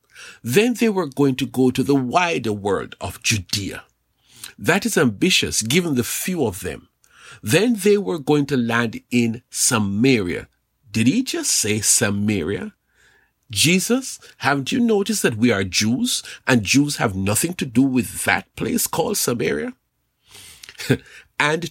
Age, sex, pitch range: 50-69, male, 105-155 Hz